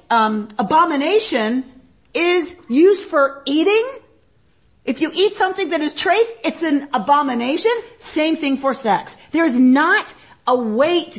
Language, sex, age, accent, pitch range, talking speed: English, female, 40-59, American, 235-315 Hz, 135 wpm